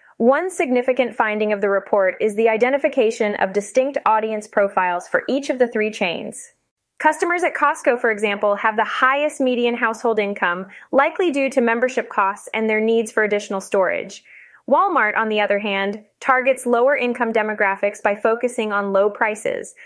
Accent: American